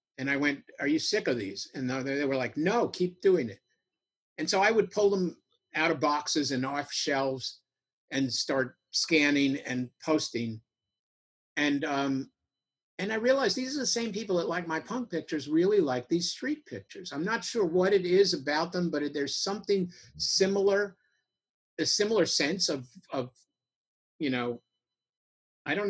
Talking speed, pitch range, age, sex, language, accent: 170 wpm, 130-180 Hz, 50-69, male, English, American